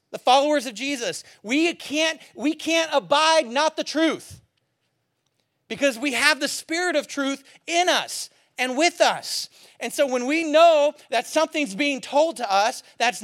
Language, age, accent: English, 40-59, American